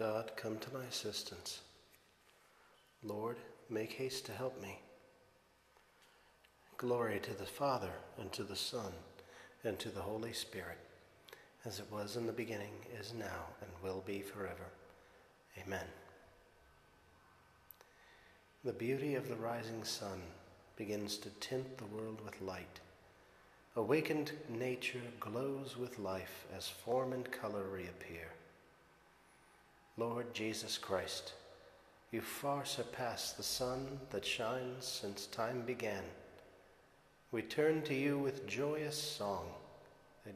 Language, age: English, 40-59